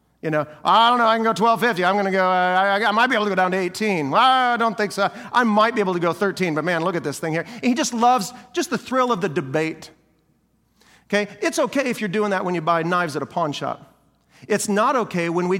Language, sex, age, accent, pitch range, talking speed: English, male, 40-59, American, 175-230 Hz, 275 wpm